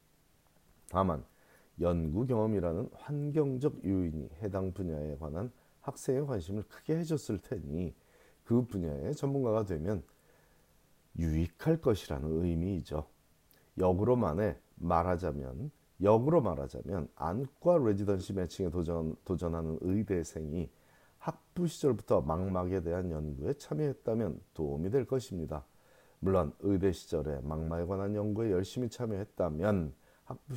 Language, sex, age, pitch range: Korean, male, 40-59, 85-115 Hz